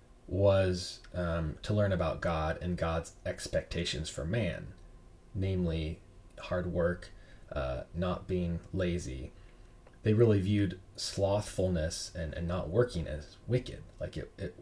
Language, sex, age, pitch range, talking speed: English, male, 30-49, 90-110 Hz, 125 wpm